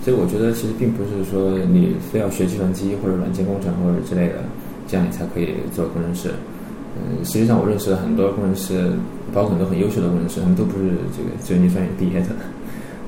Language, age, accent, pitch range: Chinese, 20-39, native, 95-110 Hz